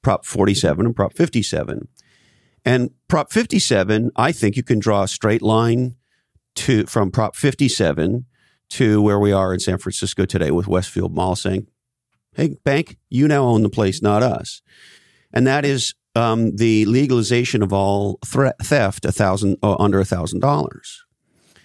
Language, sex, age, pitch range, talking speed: English, male, 50-69, 105-130 Hz, 160 wpm